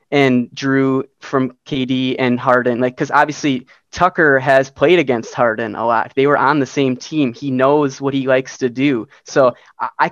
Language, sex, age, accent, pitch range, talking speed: English, male, 20-39, American, 130-150 Hz, 185 wpm